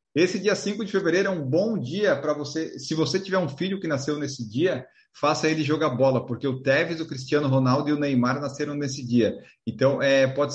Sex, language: male, Portuguese